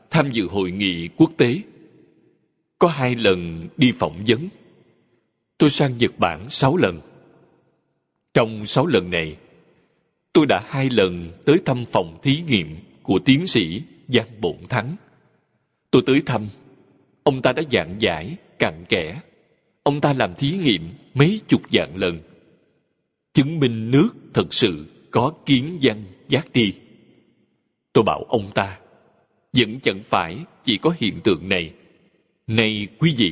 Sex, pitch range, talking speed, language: male, 115-160 Hz, 145 wpm, Vietnamese